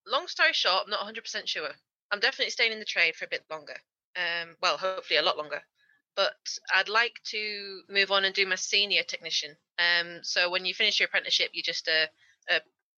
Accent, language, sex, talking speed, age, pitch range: British, English, female, 210 wpm, 20-39, 175-200 Hz